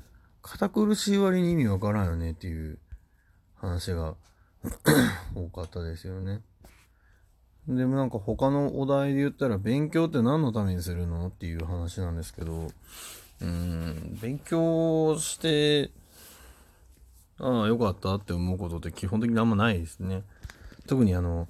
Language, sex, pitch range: Japanese, male, 90-130 Hz